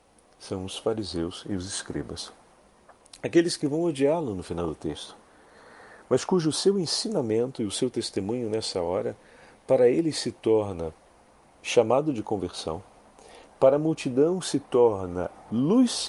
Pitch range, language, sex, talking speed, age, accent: 105-150 Hz, Portuguese, male, 140 wpm, 40-59, Brazilian